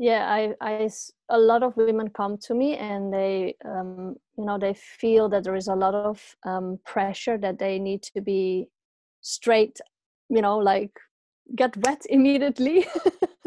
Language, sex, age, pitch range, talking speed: English, female, 20-39, 200-245 Hz, 165 wpm